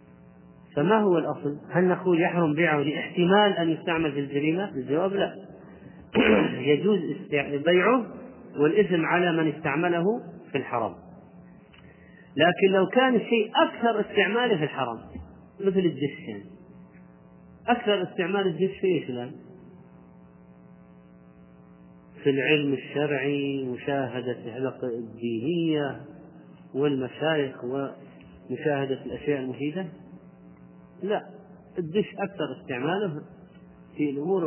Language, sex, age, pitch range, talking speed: Arabic, male, 40-59, 120-190 Hz, 95 wpm